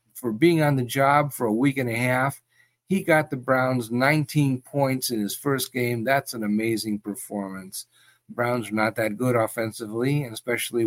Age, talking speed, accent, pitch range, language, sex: 50-69, 190 wpm, American, 110-135 Hz, English, male